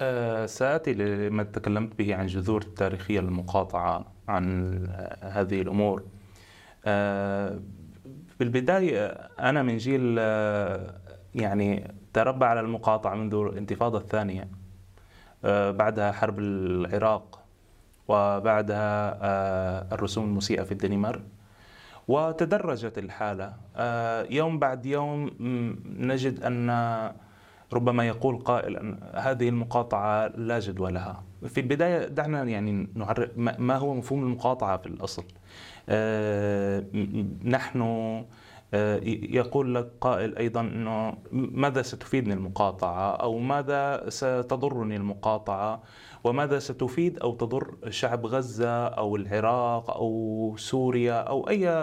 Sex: male